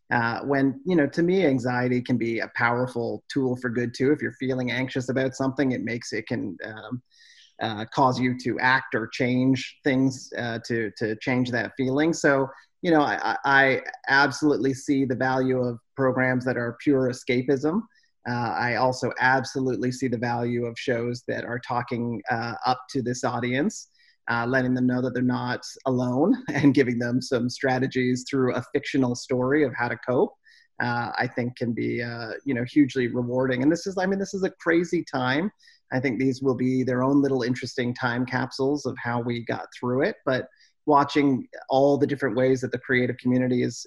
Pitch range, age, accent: 125-135 Hz, 30-49, American